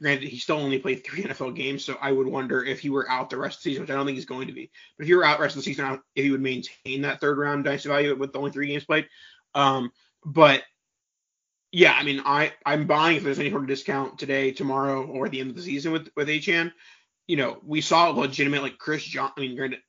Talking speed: 275 wpm